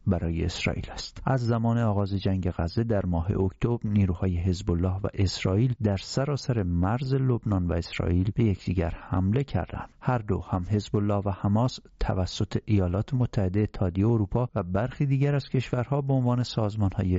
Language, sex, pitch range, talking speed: English, male, 95-120 Hz, 160 wpm